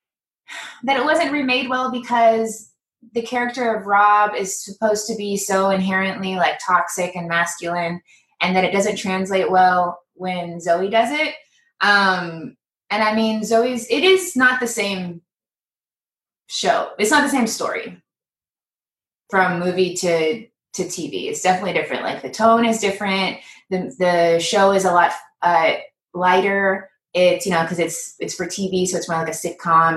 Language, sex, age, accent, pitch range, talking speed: English, female, 20-39, American, 175-220 Hz, 160 wpm